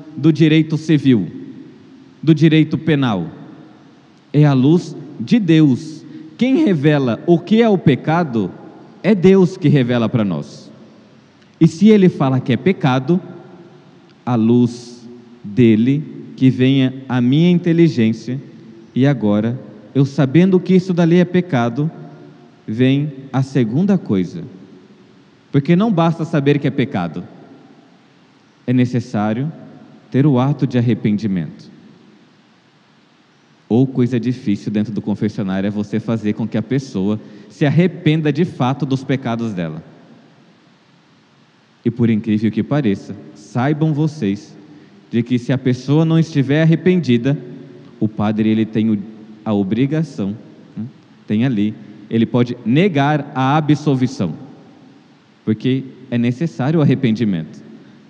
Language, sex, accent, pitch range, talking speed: Portuguese, male, Brazilian, 115-155 Hz, 125 wpm